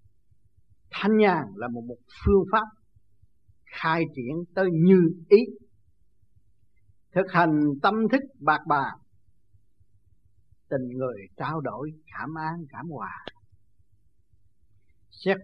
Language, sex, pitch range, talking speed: Vietnamese, male, 100-170 Hz, 100 wpm